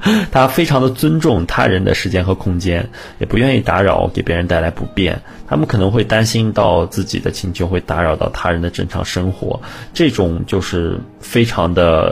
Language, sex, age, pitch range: Chinese, male, 20-39, 85-115 Hz